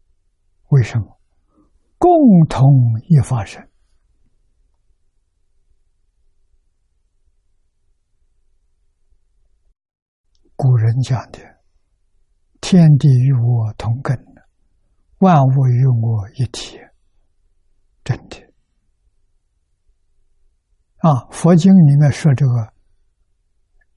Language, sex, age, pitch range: Chinese, male, 60-79, 80-130 Hz